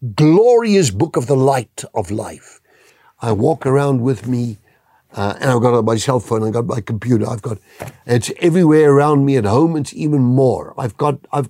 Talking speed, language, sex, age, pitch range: 195 wpm, English, male, 60-79, 110-155 Hz